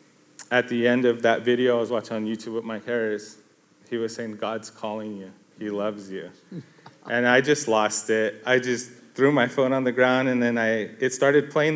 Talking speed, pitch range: 215 wpm, 110-135 Hz